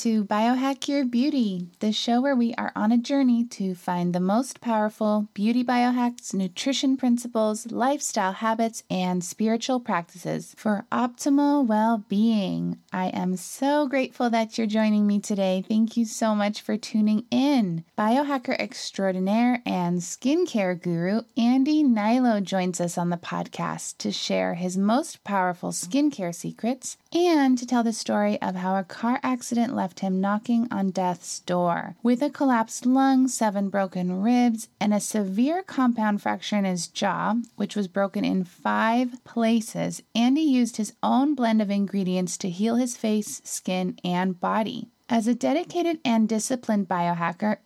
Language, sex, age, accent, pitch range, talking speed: English, female, 20-39, American, 195-245 Hz, 155 wpm